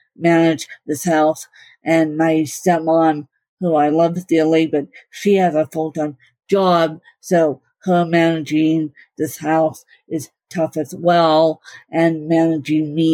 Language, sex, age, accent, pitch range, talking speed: English, female, 50-69, American, 155-170 Hz, 130 wpm